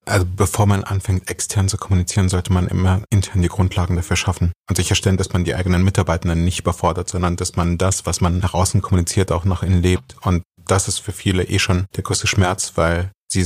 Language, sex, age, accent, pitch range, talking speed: German, male, 30-49, German, 95-110 Hz, 220 wpm